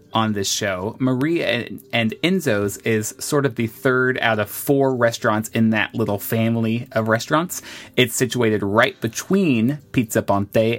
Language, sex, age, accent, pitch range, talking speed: English, male, 30-49, American, 105-130 Hz, 150 wpm